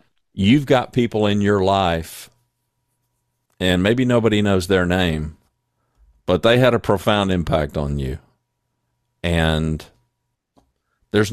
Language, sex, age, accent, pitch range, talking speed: English, male, 50-69, American, 90-115 Hz, 115 wpm